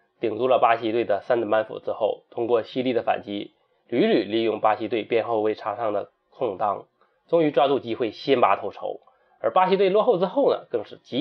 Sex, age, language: male, 20-39, Chinese